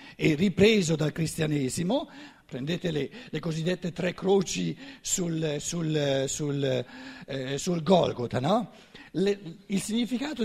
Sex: male